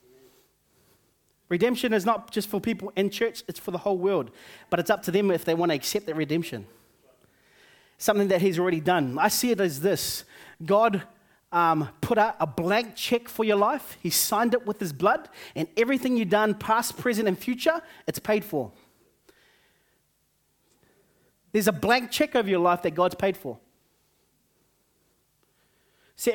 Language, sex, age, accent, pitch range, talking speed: English, male, 30-49, Australian, 175-225 Hz, 170 wpm